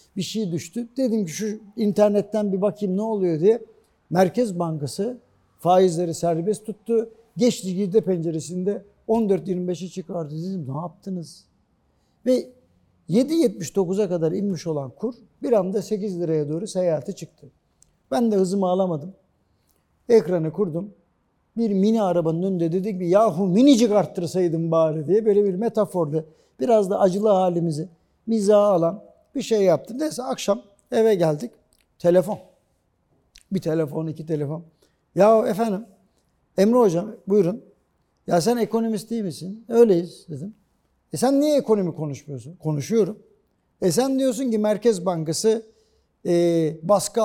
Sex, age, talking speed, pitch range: male, 60-79, 130 wpm, 170-215 Hz